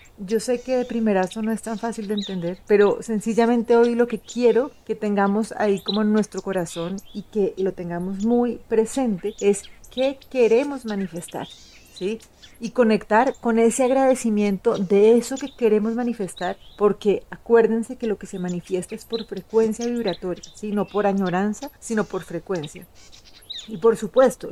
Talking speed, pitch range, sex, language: 160 wpm, 195-230 Hz, female, Spanish